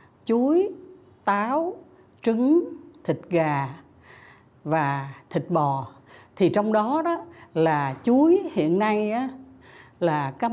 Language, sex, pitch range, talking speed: Vietnamese, female, 150-225 Hz, 110 wpm